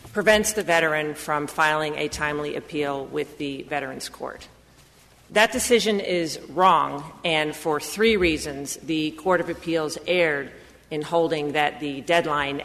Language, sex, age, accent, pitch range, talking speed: English, female, 40-59, American, 150-180 Hz, 140 wpm